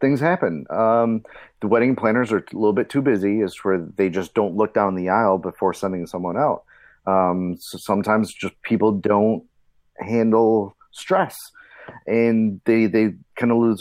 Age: 30-49